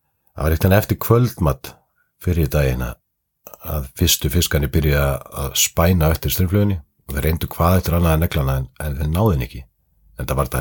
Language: English